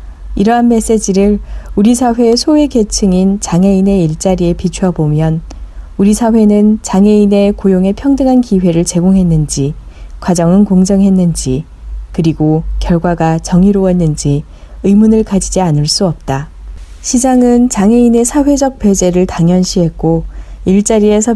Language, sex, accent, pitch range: Korean, female, native, 165-215 Hz